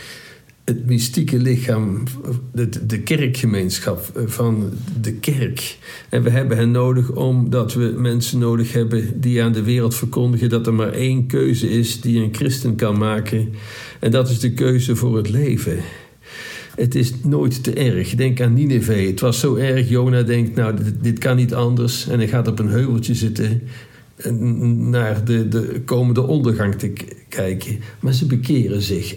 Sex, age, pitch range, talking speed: male, 50-69, 110-125 Hz, 165 wpm